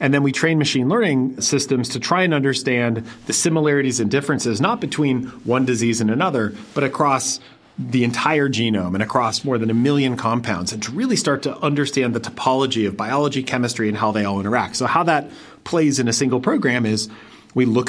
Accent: American